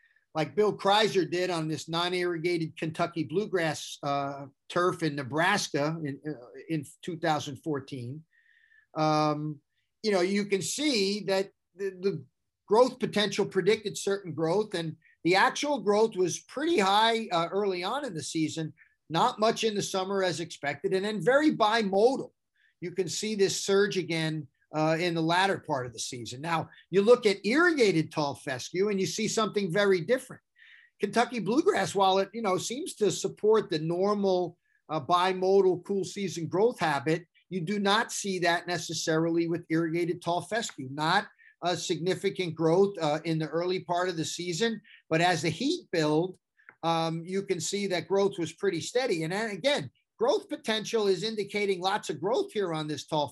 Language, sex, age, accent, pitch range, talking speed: English, male, 50-69, American, 160-205 Hz, 165 wpm